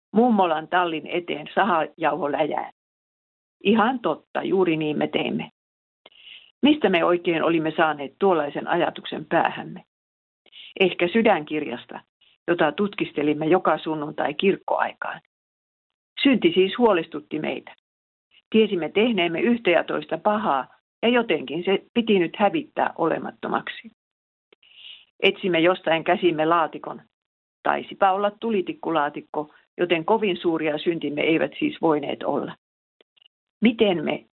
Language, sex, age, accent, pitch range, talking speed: Finnish, female, 50-69, native, 160-200 Hz, 105 wpm